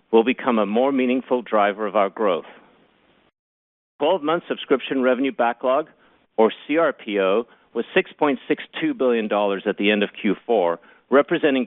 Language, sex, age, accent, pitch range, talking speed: English, male, 50-69, American, 110-135 Hz, 125 wpm